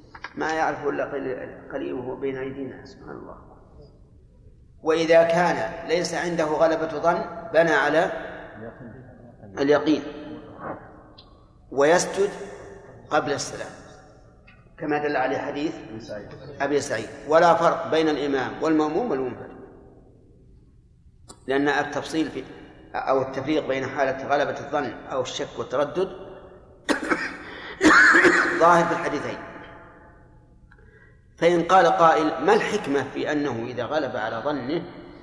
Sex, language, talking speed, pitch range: male, Arabic, 95 wpm, 130-160 Hz